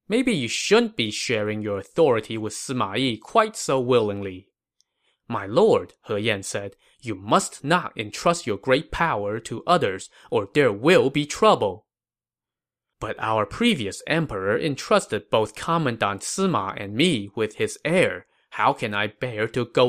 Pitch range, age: 105-160 Hz, 20-39